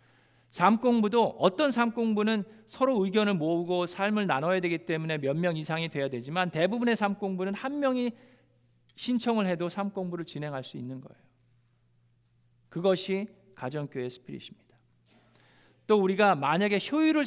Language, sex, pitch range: Korean, male, 135-220 Hz